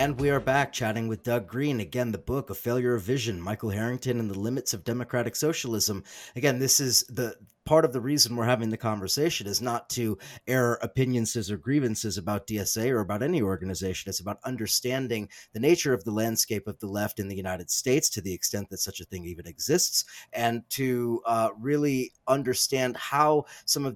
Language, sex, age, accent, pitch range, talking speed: English, male, 30-49, American, 110-130 Hz, 200 wpm